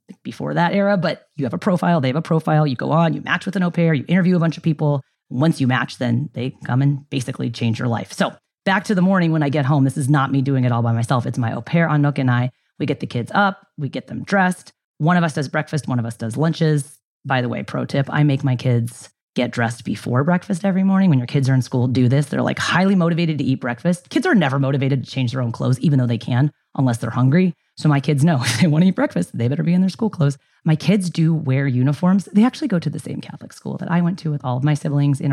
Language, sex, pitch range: English, female, 130-180 Hz